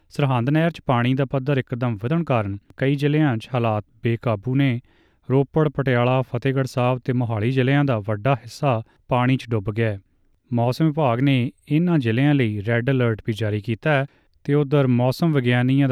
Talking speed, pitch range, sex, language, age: 170 wpm, 115-135 Hz, male, Punjabi, 30-49